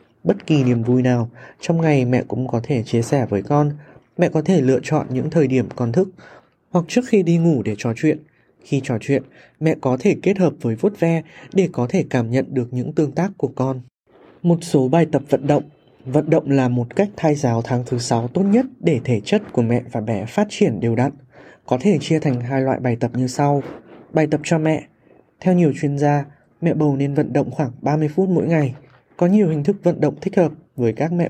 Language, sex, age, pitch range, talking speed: Vietnamese, male, 20-39, 125-160 Hz, 235 wpm